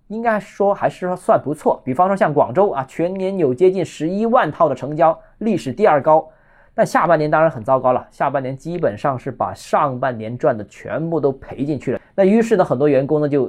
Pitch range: 125-200 Hz